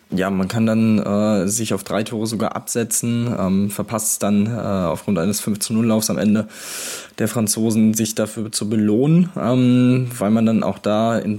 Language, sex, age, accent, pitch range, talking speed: German, male, 20-39, German, 105-125 Hz, 175 wpm